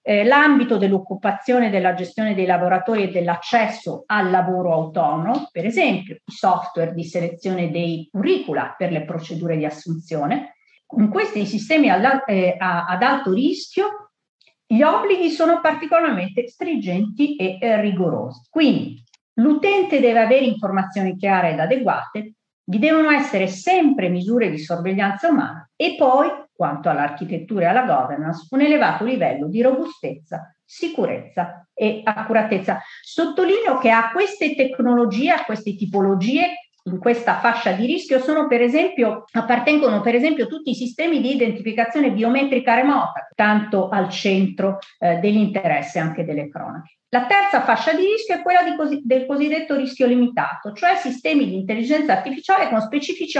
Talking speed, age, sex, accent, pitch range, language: 130 wpm, 40-59, female, native, 190-285 Hz, Italian